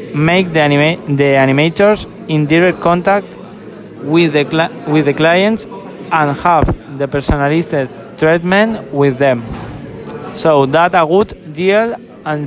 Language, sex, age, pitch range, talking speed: English, male, 20-39, 145-190 Hz, 130 wpm